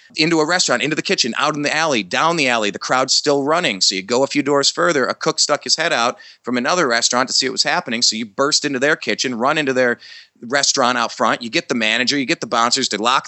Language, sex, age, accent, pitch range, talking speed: English, male, 30-49, American, 110-145 Hz, 270 wpm